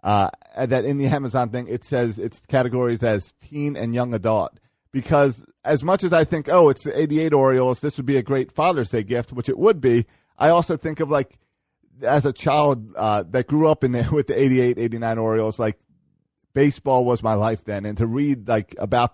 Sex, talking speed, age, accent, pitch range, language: male, 215 wpm, 30-49, American, 115-145 Hz, English